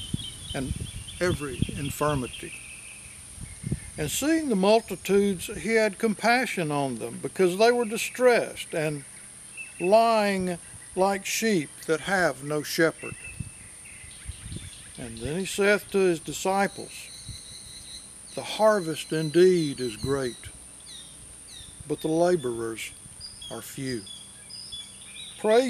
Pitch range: 135-200 Hz